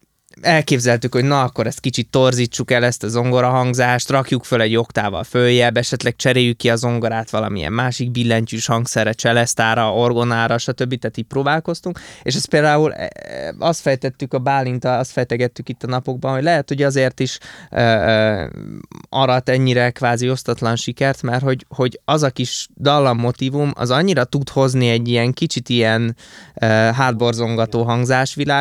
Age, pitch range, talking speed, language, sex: 20-39, 115-135 Hz, 155 wpm, Hungarian, male